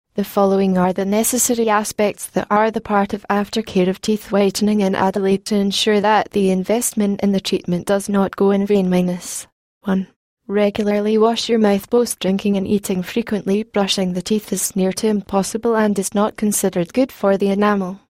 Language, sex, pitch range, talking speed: English, female, 190-215 Hz, 180 wpm